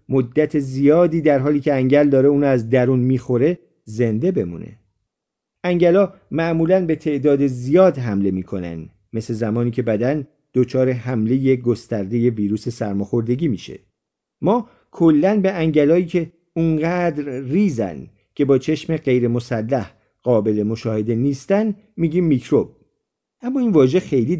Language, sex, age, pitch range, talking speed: Persian, male, 50-69, 115-160 Hz, 130 wpm